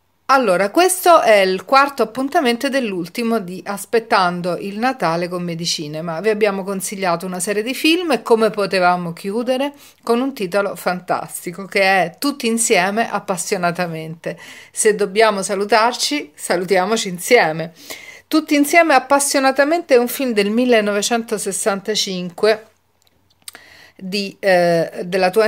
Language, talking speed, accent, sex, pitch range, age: Italian, 110 wpm, native, female, 180-230 Hz, 40-59